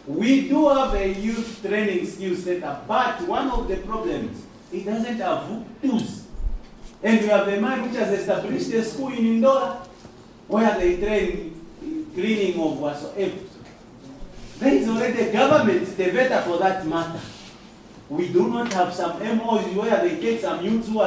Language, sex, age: English, male, 40-59